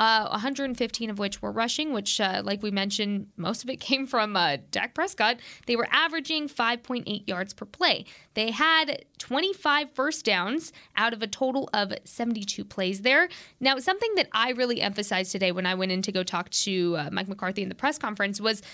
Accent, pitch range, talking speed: American, 195-260 Hz, 200 wpm